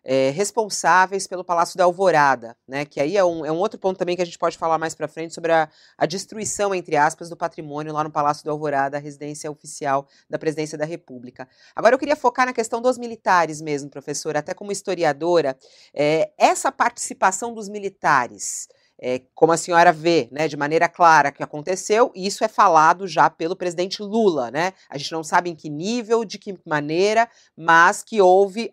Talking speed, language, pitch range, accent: 190 wpm, Portuguese, 155-215 Hz, Brazilian